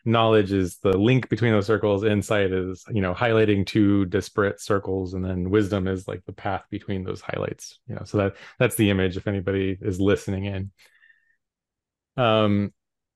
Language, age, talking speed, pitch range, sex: English, 30-49, 175 wpm, 95-110 Hz, male